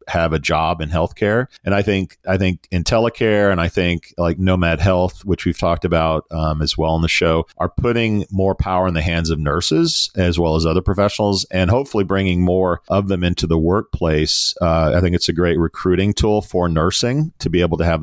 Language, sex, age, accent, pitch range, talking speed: English, male, 40-59, American, 85-100 Hz, 220 wpm